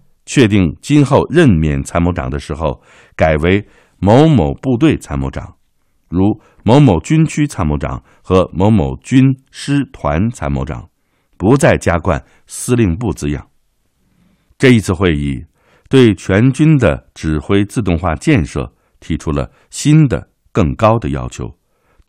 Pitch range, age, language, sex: 70-110 Hz, 60-79, Chinese, male